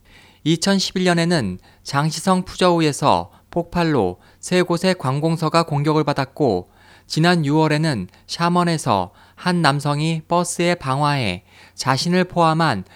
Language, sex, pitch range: Korean, male, 100-170 Hz